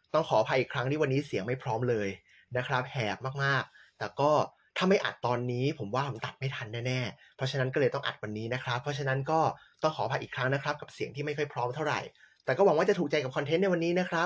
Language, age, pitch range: Thai, 20-39, 130-170 Hz